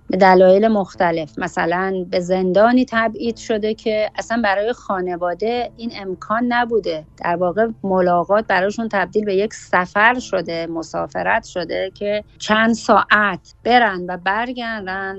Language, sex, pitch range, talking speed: Persian, female, 180-225 Hz, 125 wpm